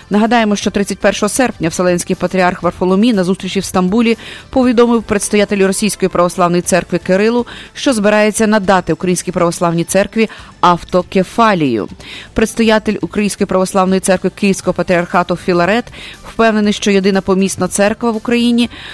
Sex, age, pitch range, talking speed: female, 30-49, 180-220 Hz, 120 wpm